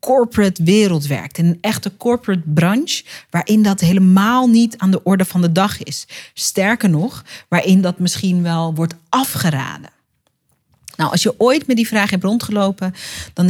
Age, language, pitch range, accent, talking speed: 40-59, Dutch, 165-220 Hz, Dutch, 165 wpm